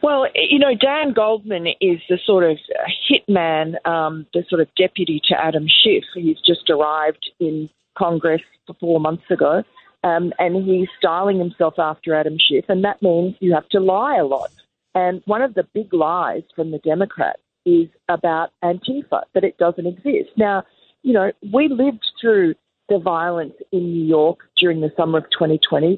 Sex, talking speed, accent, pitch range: female, 175 wpm, Australian, 165-210 Hz